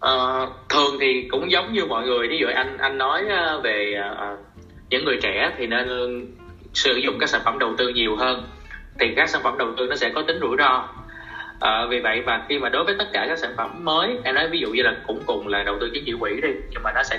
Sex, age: male, 20-39